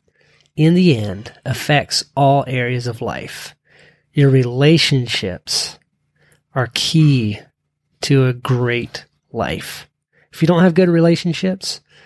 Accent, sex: American, male